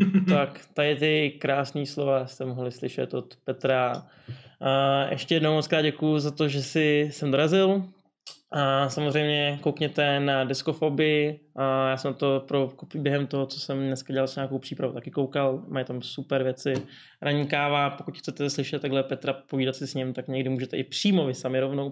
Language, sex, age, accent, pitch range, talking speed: Czech, male, 20-39, native, 135-165 Hz, 170 wpm